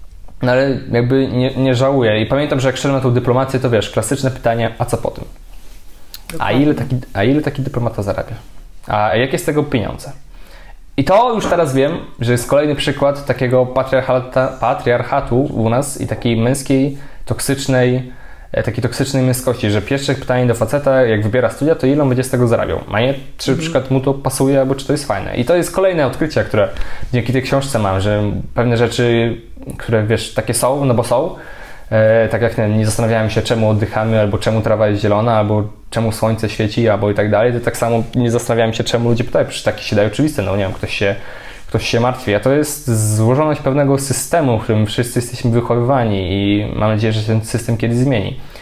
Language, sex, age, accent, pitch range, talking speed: Polish, male, 20-39, native, 110-135 Hz, 200 wpm